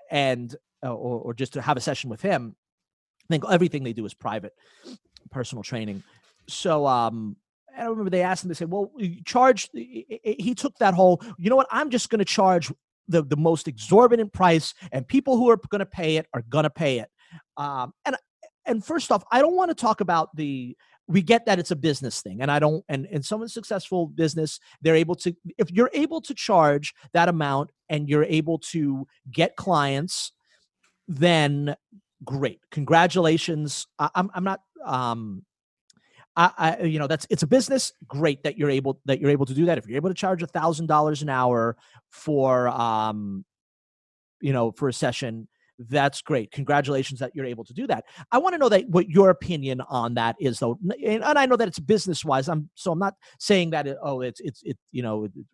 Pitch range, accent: 135-185 Hz, American